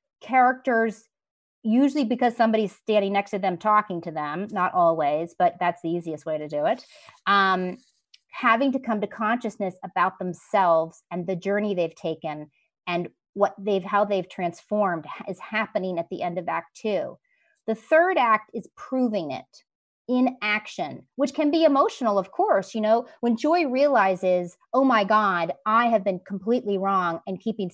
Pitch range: 185-250 Hz